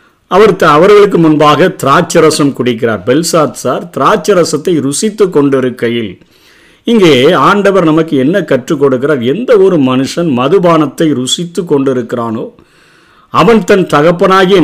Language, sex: Tamil, male